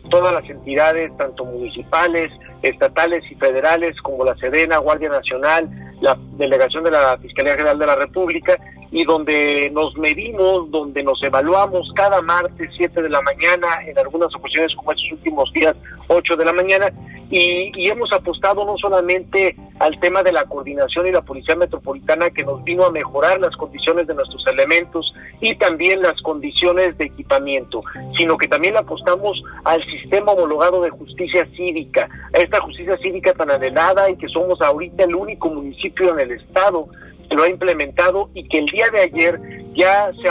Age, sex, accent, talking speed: 50-69, male, Mexican, 175 wpm